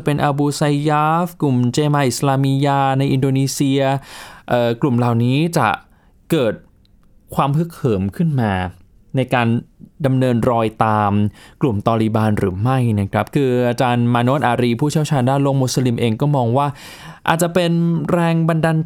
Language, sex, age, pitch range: Thai, male, 20-39, 115-155 Hz